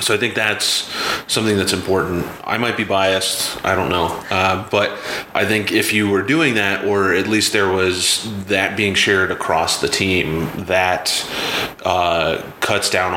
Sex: male